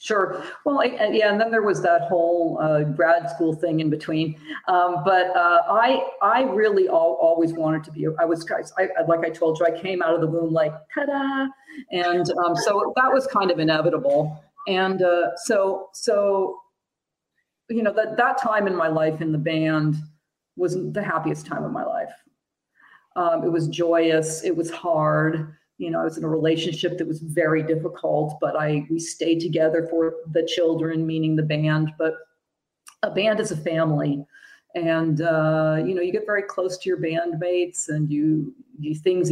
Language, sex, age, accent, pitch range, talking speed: English, female, 40-59, American, 160-190 Hz, 190 wpm